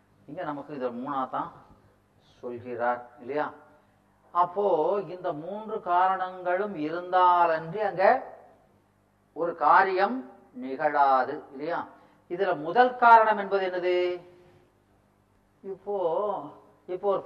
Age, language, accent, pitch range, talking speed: 40-59, Tamil, native, 120-205 Hz, 85 wpm